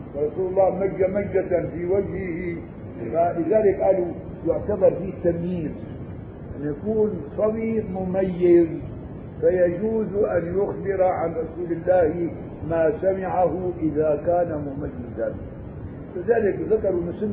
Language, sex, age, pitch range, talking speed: Arabic, male, 50-69, 145-190 Hz, 105 wpm